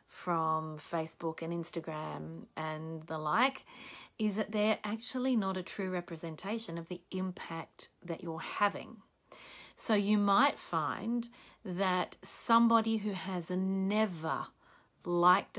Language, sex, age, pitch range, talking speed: English, female, 30-49, 170-210 Hz, 120 wpm